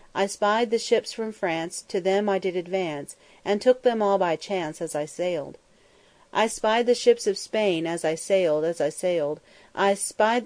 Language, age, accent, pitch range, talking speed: English, 40-59, American, 170-215 Hz, 195 wpm